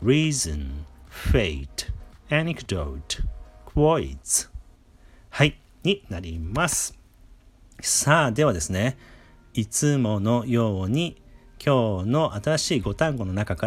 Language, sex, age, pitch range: Japanese, male, 40-59, 85-130 Hz